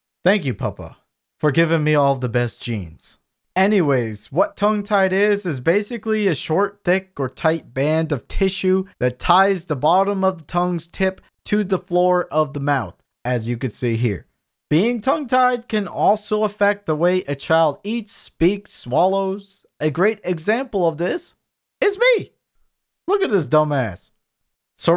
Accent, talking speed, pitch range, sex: American, 160 wpm, 155-210 Hz, male